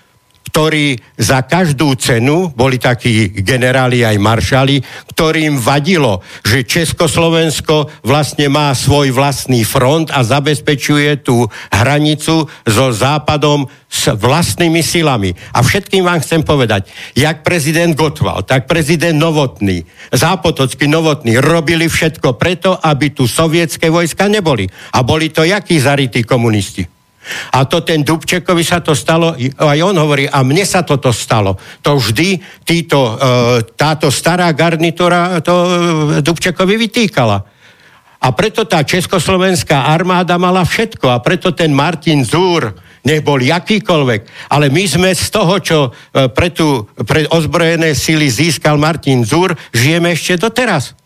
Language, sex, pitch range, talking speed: Slovak, male, 130-170 Hz, 125 wpm